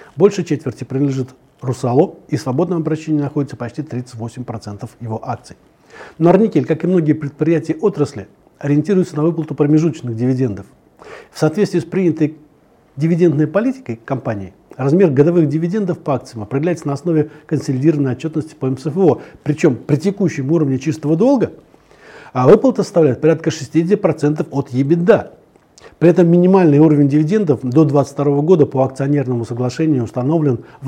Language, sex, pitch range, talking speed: Turkish, male, 135-165 Hz, 135 wpm